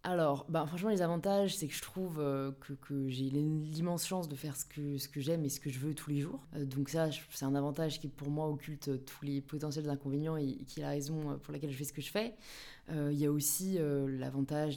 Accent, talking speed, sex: French, 270 wpm, female